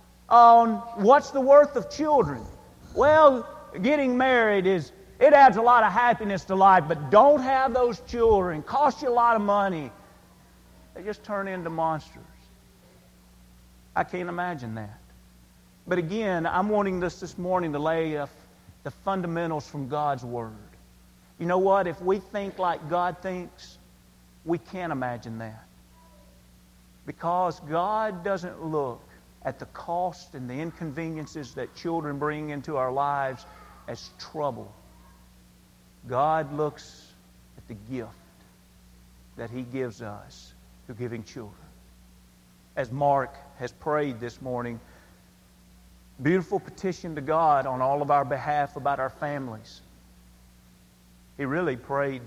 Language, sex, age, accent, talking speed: English, male, 50-69, American, 135 wpm